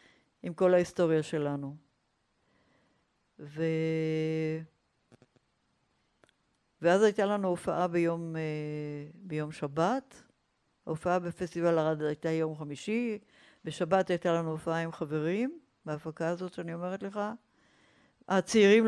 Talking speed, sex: 95 wpm, female